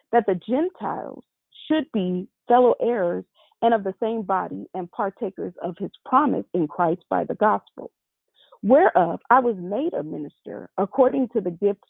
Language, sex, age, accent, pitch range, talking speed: English, female, 40-59, American, 190-245 Hz, 160 wpm